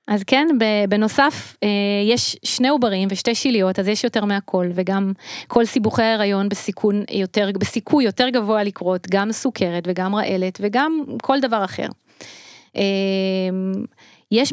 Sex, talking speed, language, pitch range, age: female, 120 wpm, Hebrew, 195-245 Hz, 30-49